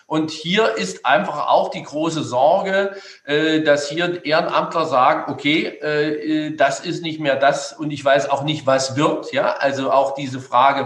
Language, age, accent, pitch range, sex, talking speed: German, 50-69, German, 145-185 Hz, male, 160 wpm